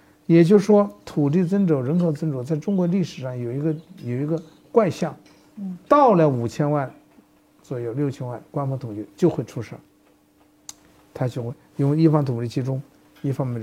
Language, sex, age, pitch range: Chinese, male, 60-79, 125-180 Hz